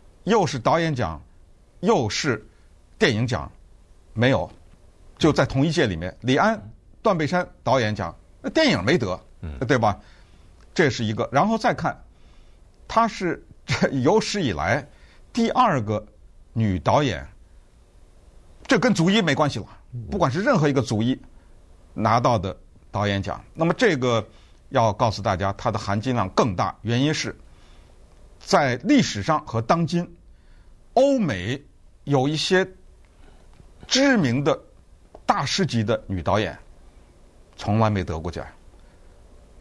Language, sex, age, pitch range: Chinese, male, 50-69, 90-145 Hz